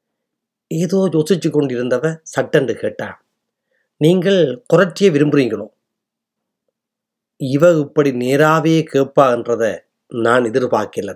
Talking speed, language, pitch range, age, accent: 80 wpm, Tamil, 125-180 Hz, 30-49, native